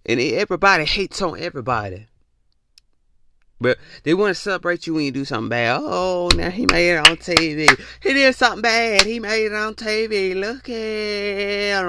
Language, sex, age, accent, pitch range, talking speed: English, male, 30-49, American, 140-195 Hz, 170 wpm